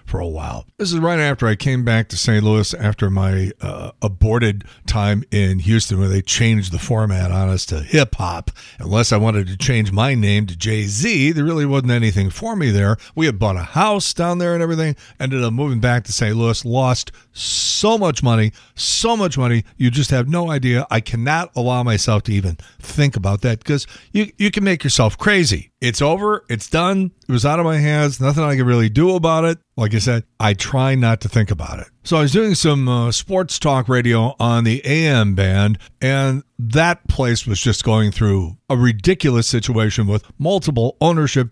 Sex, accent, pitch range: male, American, 105-145 Hz